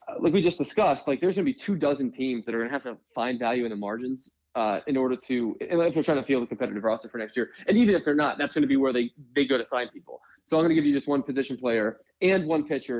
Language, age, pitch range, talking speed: English, 20-39, 125-160 Hz, 320 wpm